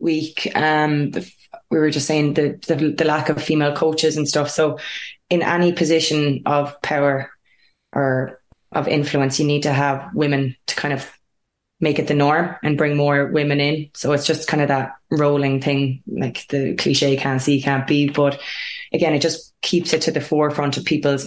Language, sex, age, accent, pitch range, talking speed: English, female, 20-39, Irish, 140-155 Hz, 190 wpm